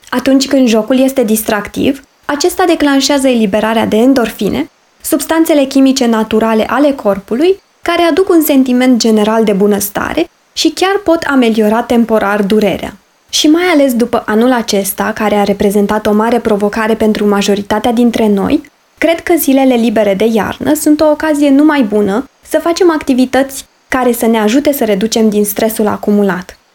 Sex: female